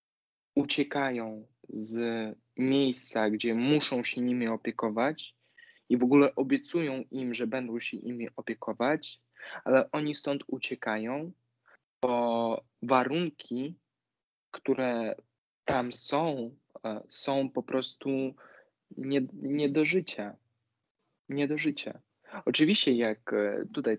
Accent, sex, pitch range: native, male, 110-130 Hz